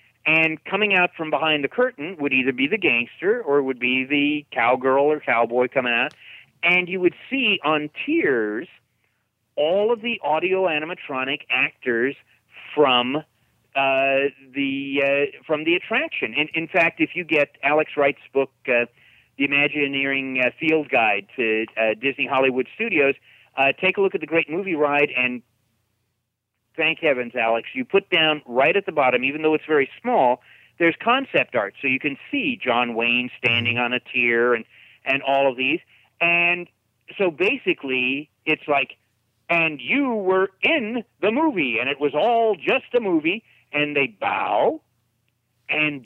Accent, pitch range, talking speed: American, 125-175 Hz, 165 wpm